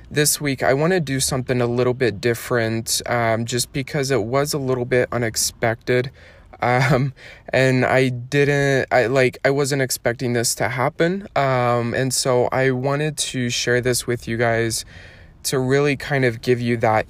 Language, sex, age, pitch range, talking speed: English, male, 20-39, 110-130 Hz, 175 wpm